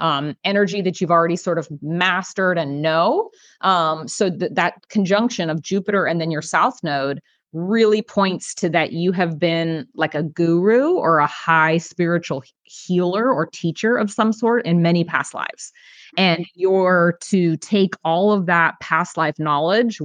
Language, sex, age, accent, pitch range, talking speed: English, female, 30-49, American, 160-195 Hz, 170 wpm